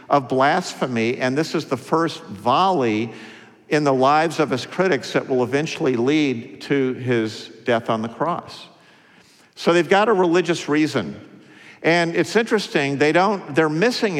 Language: English